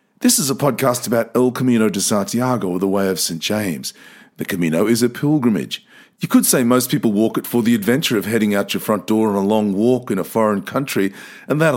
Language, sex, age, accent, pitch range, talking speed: English, male, 40-59, Australian, 105-155 Hz, 230 wpm